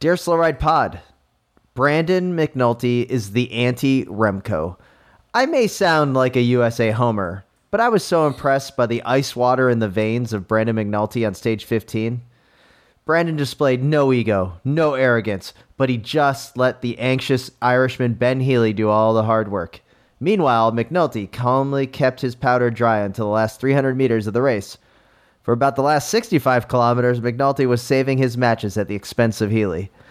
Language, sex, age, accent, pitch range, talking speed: English, male, 30-49, American, 110-135 Hz, 165 wpm